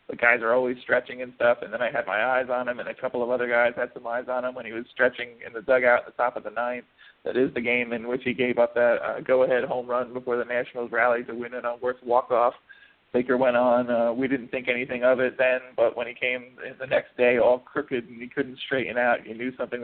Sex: male